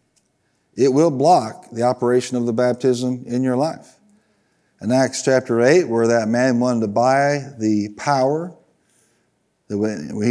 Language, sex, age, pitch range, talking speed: English, male, 40-59, 120-145 Hz, 150 wpm